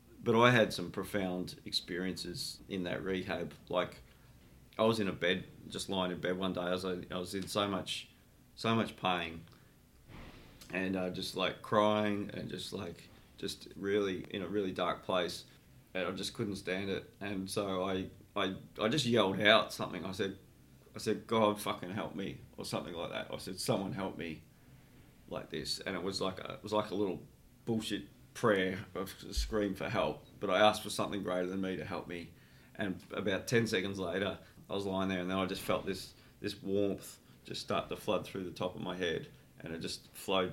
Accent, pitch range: Australian, 90-105 Hz